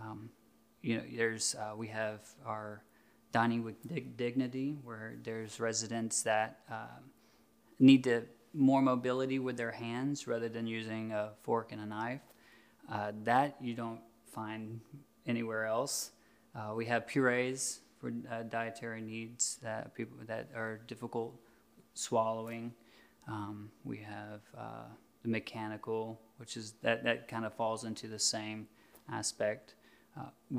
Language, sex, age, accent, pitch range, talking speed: English, male, 20-39, American, 110-125 Hz, 140 wpm